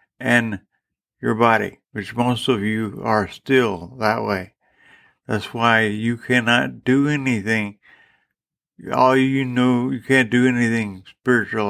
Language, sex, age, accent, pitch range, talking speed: English, male, 60-79, American, 105-125 Hz, 130 wpm